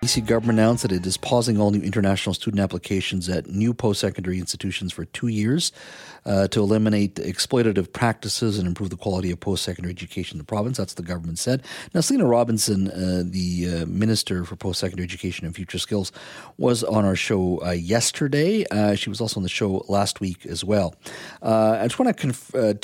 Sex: male